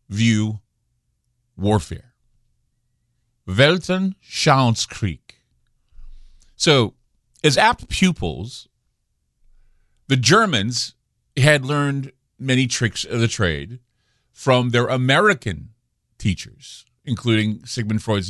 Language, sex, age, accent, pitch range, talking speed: English, male, 50-69, American, 105-130 Hz, 75 wpm